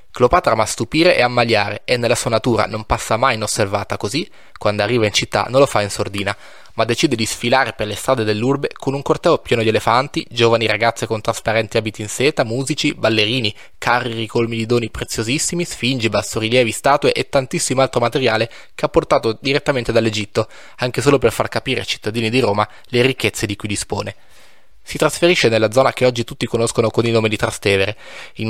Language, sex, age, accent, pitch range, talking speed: Italian, male, 20-39, native, 110-130 Hz, 190 wpm